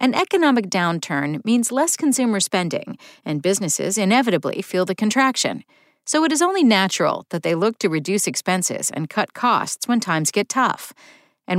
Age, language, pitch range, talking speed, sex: 40-59, English, 180-260 Hz, 165 wpm, female